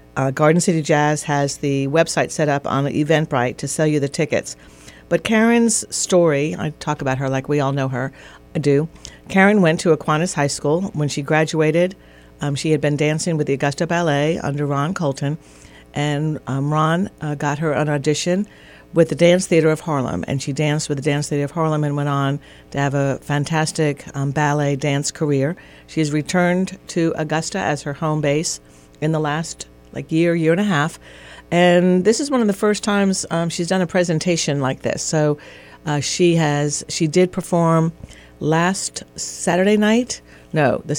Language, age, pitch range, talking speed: English, 50-69, 140-165 Hz, 190 wpm